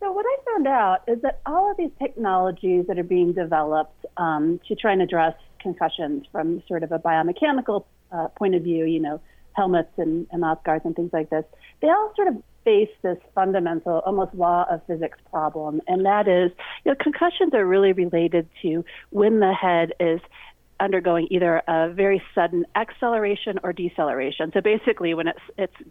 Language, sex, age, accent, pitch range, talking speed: English, female, 40-59, American, 170-215 Hz, 185 wpm